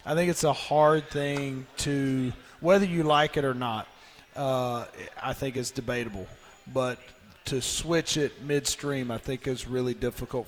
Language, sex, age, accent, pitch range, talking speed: English, male, 40-59, American, 120-140 Hz, 165 wpm